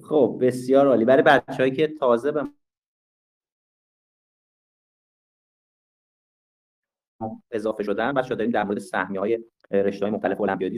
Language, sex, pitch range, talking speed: Persian, male, 100-130 Hz, 115 wpm